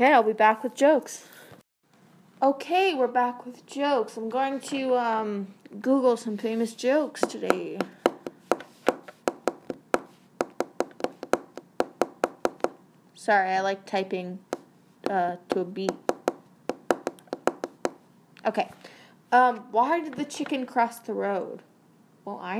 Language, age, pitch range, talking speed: English, 20-39, 190-250 Hz, 100 wpm